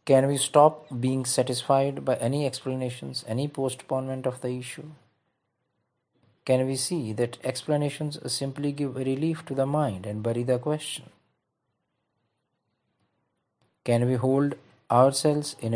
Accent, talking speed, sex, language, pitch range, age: Indian, 125 wpm, male, English, 120-140 Hz, 50-69